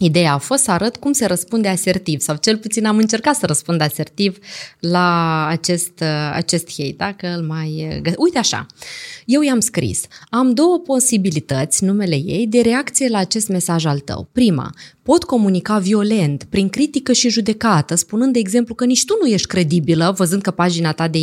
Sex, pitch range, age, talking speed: female, 160-235 Hz, 20-39, 180 wpm